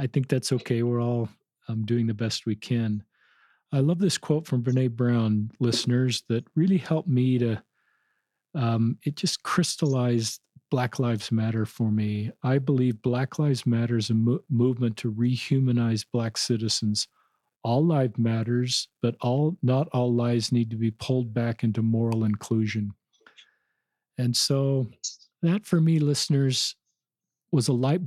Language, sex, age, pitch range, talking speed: English, male, 40-59, 115-130 Hz, 155 wpm